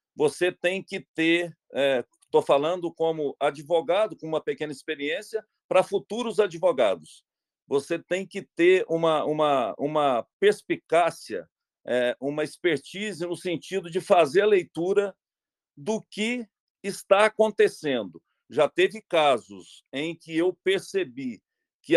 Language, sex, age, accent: Portuguese, male, 50-69, Brazilian